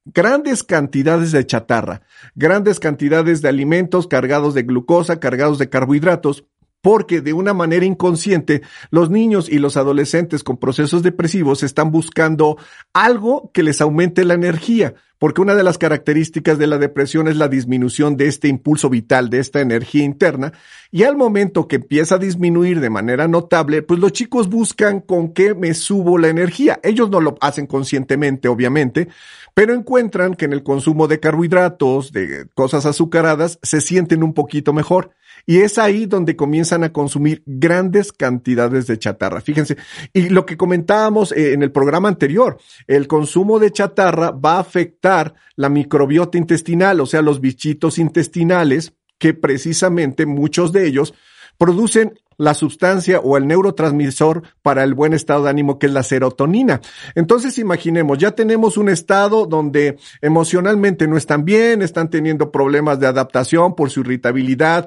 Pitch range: 140-180 Hz